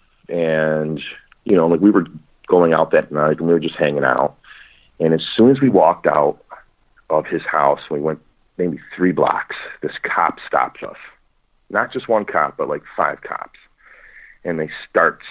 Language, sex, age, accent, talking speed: English, male, 40-59, American, 180 wpm